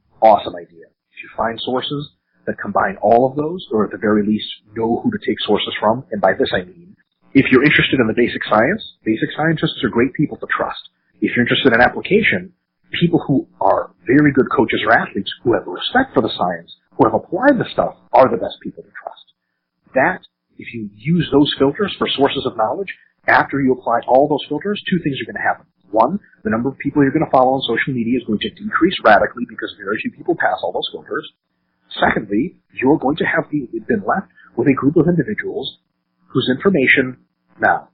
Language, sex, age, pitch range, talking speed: English, male, 40-59, 110-150 Hz, 215 wpm